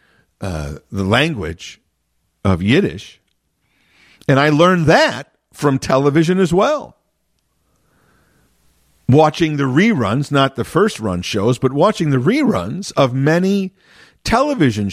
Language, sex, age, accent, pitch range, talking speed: English, male, 50-69, American, 105-155 Hz, 115 wpm